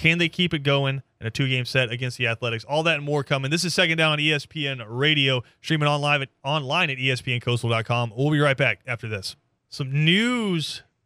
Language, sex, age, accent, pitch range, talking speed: English, male, 30-49, American, 120-150 Hz, 195 wpm